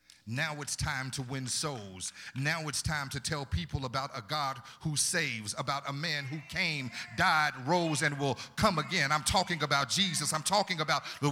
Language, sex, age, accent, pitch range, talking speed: English, male, 50-69, American, 120-175 Hz, 190 wpm